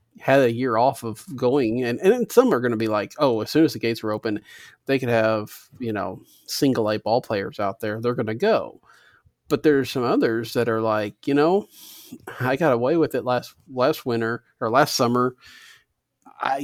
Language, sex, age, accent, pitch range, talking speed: English, male, 40-59, American, 110-135 Hz, 205 wpm